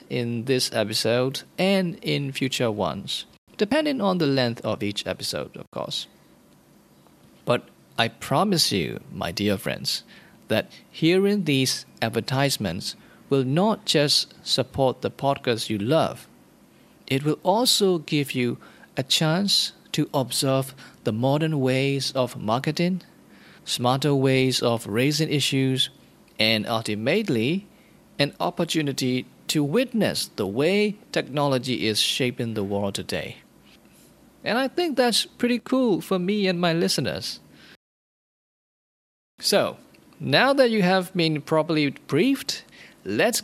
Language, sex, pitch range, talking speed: English, male, 125-190 Hz, 120 wpm